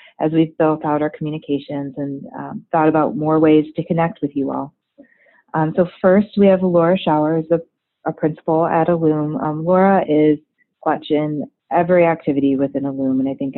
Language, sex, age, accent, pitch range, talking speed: English, female, 30-49, American, 140-160 Hz, 170 wpm